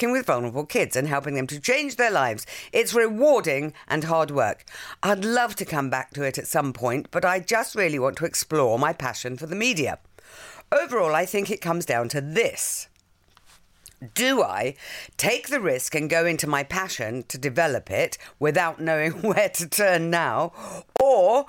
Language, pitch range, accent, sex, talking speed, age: English, 140-205 Hz, British, female, 180 wpm, 50-69